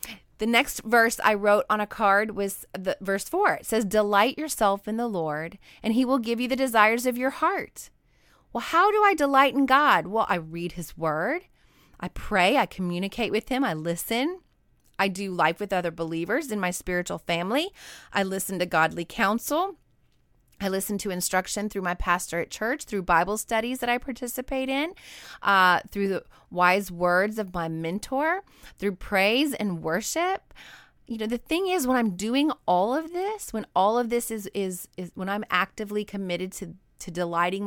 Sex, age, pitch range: female, 30-49, 180-240 Hz